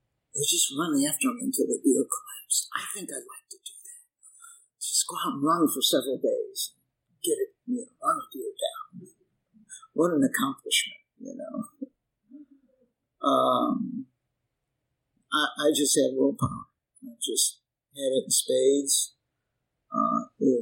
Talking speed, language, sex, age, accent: 145 wpm, English, male, 50-69, American